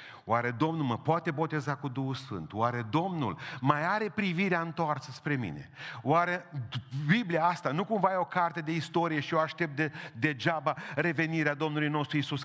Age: 40-59